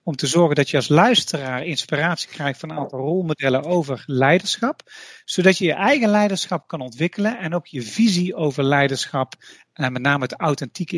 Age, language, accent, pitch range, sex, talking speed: 40-59, Dutch, Dutch, 140-185 Hz, male, 180 wpm